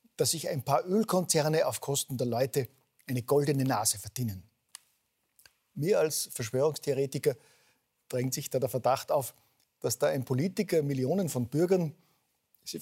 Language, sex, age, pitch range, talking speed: German, male, 50-69, 125-155 Hz, 140 wpm